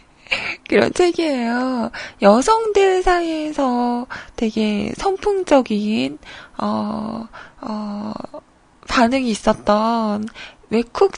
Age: 20-39